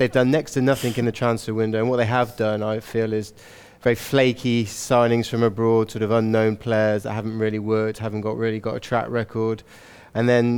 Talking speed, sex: 220 wpm, male